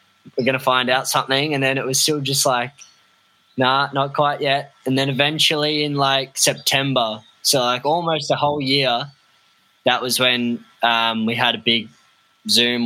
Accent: Australian